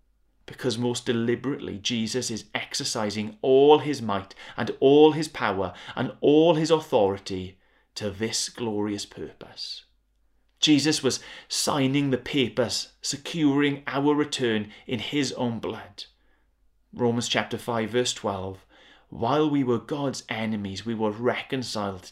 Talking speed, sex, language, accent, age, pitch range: 125 wpm, male, English, British, 30-49, 105-130 Hz